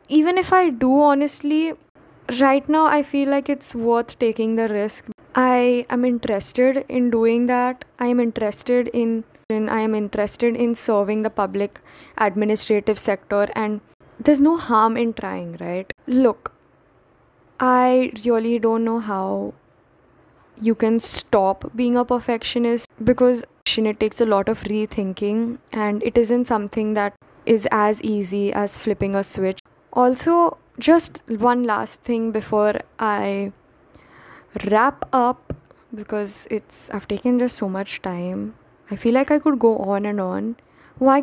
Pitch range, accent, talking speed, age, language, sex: 210-255 Hz, Indian, 145 wpm, 10-29, English, female